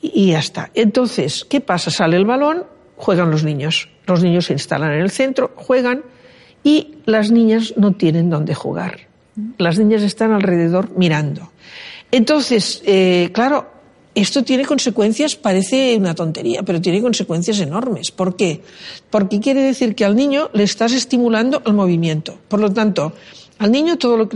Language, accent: Spanish, Spanish